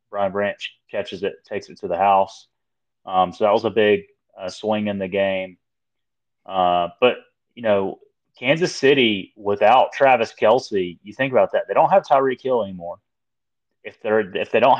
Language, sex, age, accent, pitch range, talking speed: English, male, 30-49, American, 95-135 Hz, 175 wpm